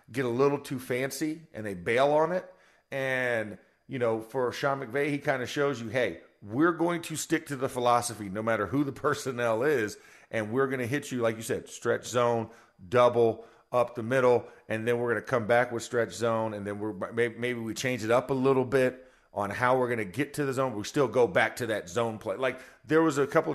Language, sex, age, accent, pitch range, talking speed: English, male, 40-59, American, 115-135 Hz, 235 wpm